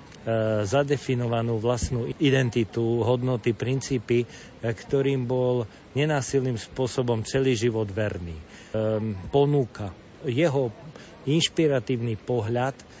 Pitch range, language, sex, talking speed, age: 110-130 Hz, Slovak, male, 80 wpm, 40-59